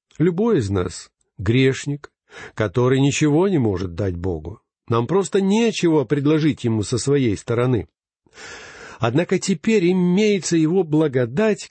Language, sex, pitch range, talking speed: Russian, male, 115-175 Hz, 120 wpm